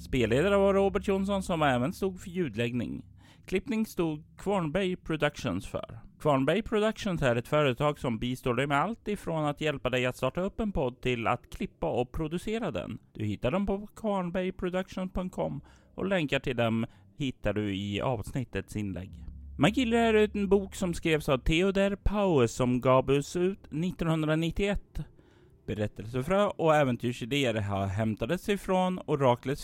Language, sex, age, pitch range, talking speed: Swedish, male, 30-49, 115-185 Hz, 150 wpm